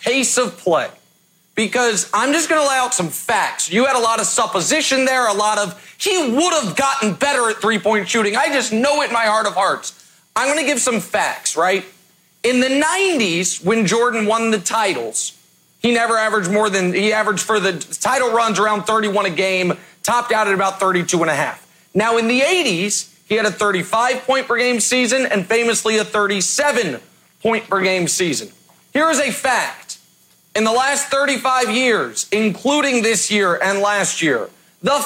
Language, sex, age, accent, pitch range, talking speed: English, male, 30-49, American, 200-255 Hz, 195 wpm